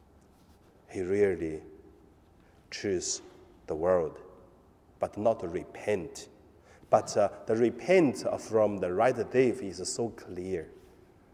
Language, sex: Chinese, male